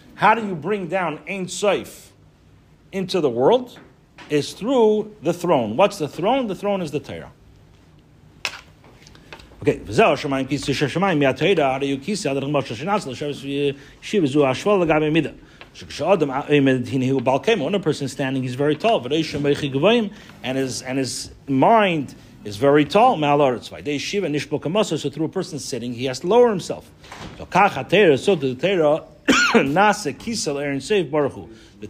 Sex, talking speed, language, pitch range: male, 95 wpm, English, 130-180 Hz